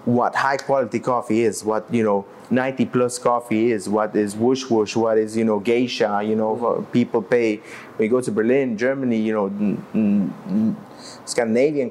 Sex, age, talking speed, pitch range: male, 30-49, 175 wpm, 115-145 Hz